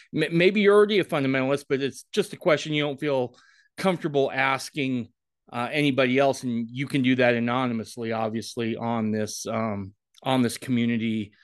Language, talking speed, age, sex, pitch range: English, 165 wpm, 30-49, male, 125-180 Hz